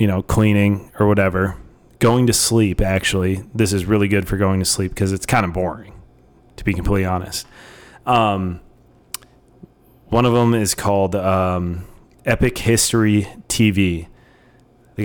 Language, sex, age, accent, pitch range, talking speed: English, male, 30-49, American, 95-115 Hz, 150 wpm